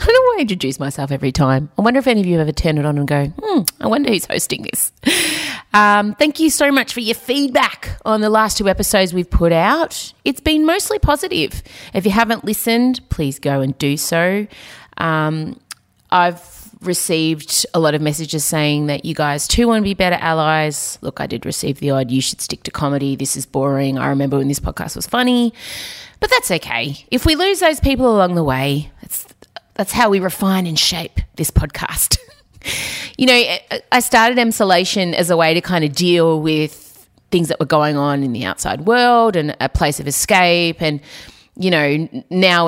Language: English